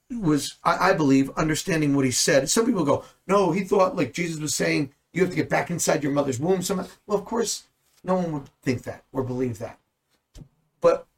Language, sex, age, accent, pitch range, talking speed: English, male, 50-69, American, 130-175 Hz, 210 wpm